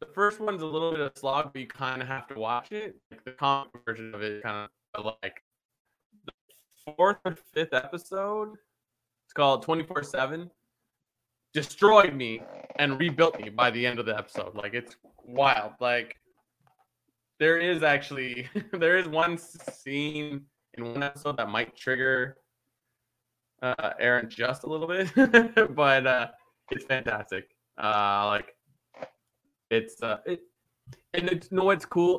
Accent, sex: American, male